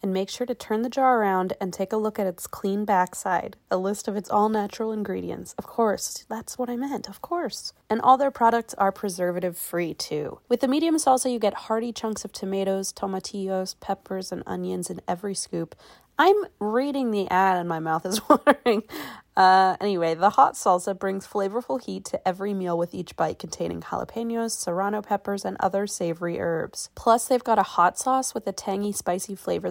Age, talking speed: 20-39, 200 wpm